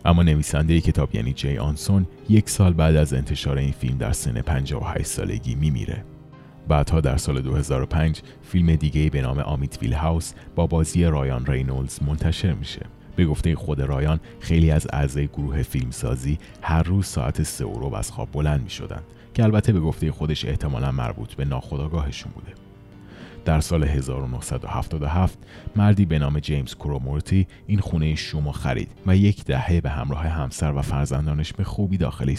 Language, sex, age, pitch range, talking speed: Persian, male, 30-49, 70-95 Hz, 160 wpm